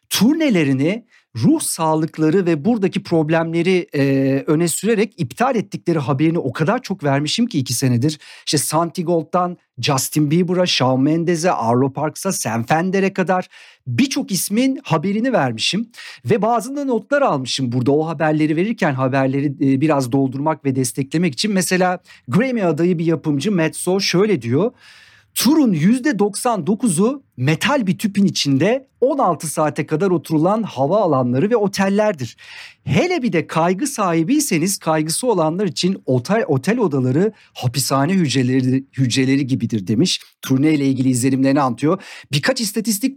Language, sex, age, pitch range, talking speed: Turkish, male, 50-69, 140-210 Hz, 130 wpm